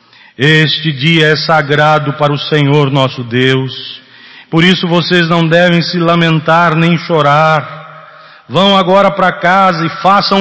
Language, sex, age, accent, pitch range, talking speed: Portuguese, male, 40-59, Brazilian, 135-180 Hz, 140 wpm